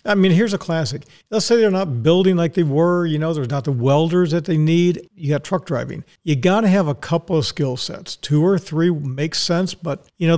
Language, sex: English, male